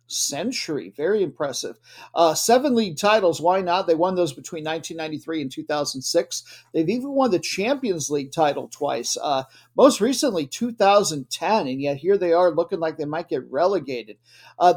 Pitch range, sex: 155-205 Hz, male